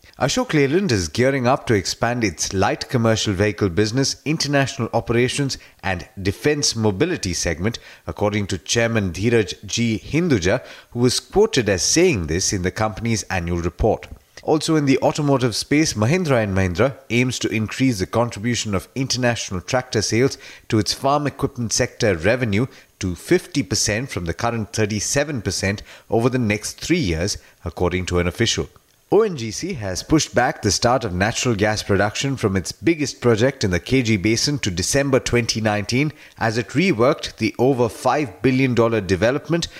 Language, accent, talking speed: English, Indian, 150 wpm